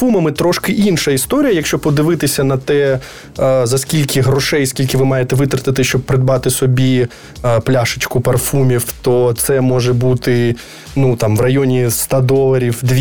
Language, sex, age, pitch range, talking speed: Ukrainian, male, 20-39, 130-155 Hz, 140 wpm